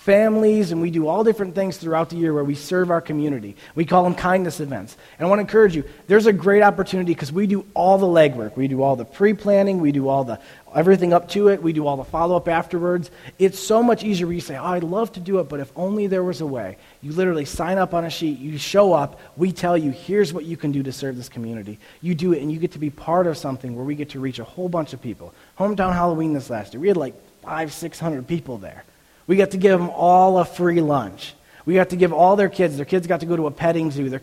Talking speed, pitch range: 270 wpm, 145-190 Hz